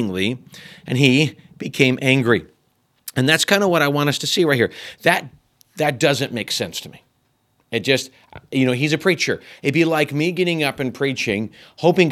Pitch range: 125-165 Hz